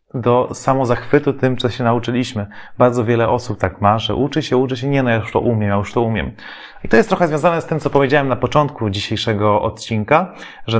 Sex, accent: male, native